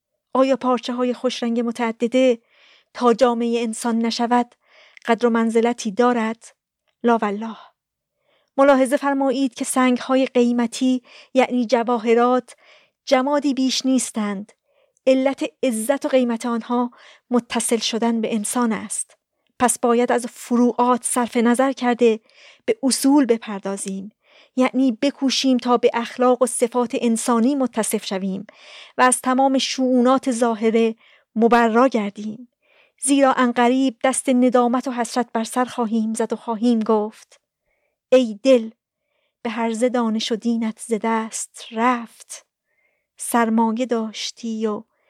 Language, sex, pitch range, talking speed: Persian, female, 230-260 Hz, 120 wpm